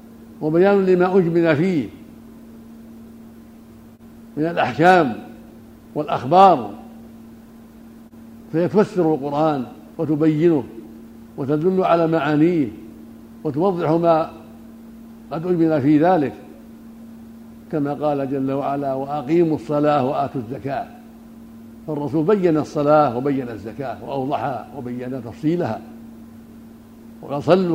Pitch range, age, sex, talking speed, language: 120-180 Hz, 60-79, male, 80 wpm, Arabic